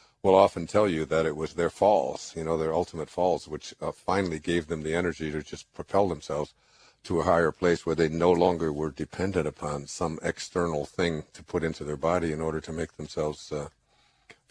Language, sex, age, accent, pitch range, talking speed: English, male, 50-69, American, 80-85 Hz, 205 wpm